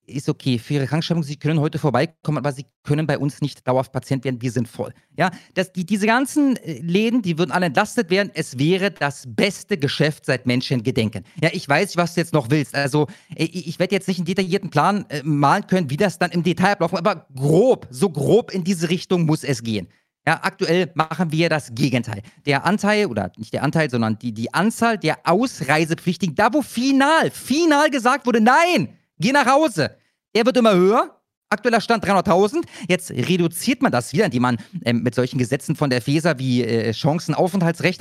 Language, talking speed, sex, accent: German, 200 wpm, male, German